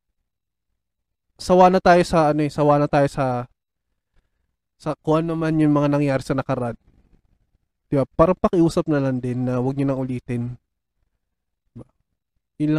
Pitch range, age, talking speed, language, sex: 125-150 Hz, 20-39, 150 wpm, Filipino, male